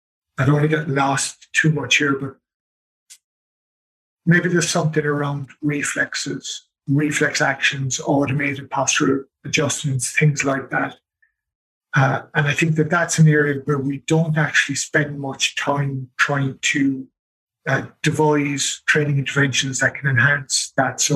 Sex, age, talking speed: male, 50-69, 140 wpm